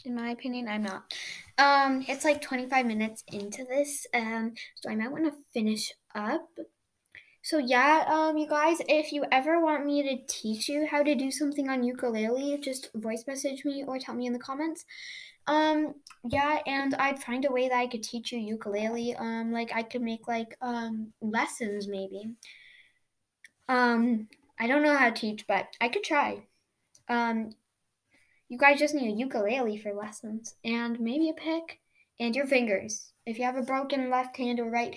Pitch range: 225-285 Hz